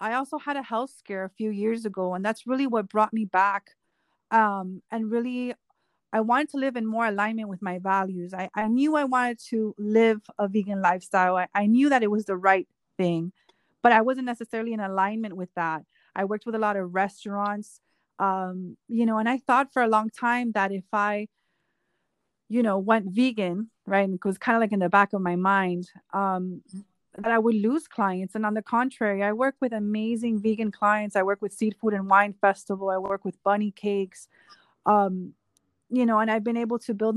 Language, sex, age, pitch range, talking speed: English, female, 30-49, 195-225 Hz, 215 wpm